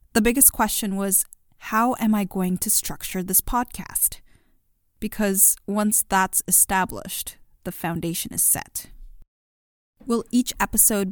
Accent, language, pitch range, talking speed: American, English, 180-215 Hz, 125 wpm